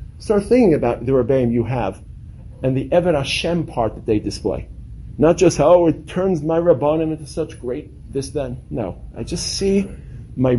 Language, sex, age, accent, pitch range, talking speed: English, male, 50-69, American, 110-150 Hz, 185 wpm